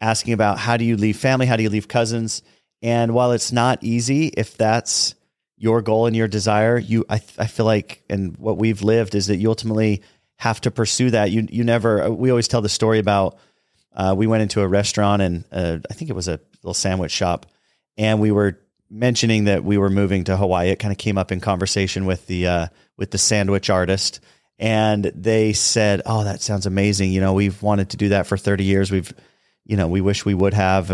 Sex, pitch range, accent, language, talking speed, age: male, 95-115 Hz, American, English, 225 wpm, 30-49